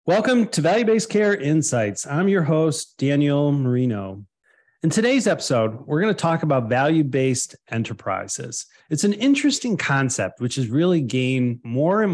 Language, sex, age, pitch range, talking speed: English, male, 30-49, 125-165 Hz, 150 wpm